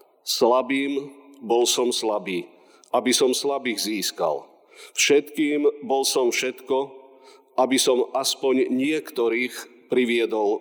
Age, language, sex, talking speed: 50-69, Slovak, male, 95 wpm